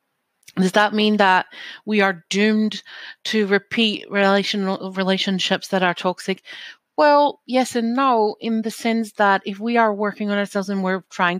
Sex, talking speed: female, 165 wpm